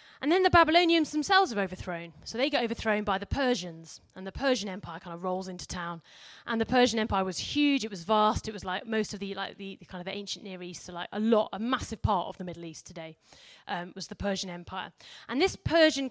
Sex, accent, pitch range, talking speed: female, British, 185-250 Hz, 245 wpm